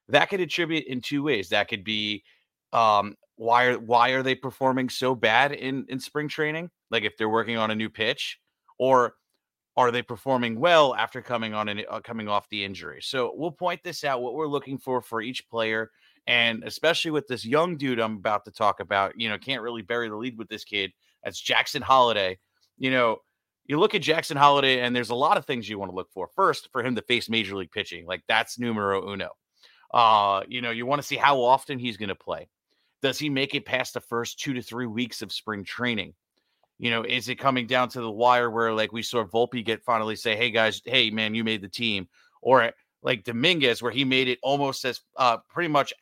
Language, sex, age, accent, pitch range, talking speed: English, male, 30-49, American, 110-135 Hz, 225 wpm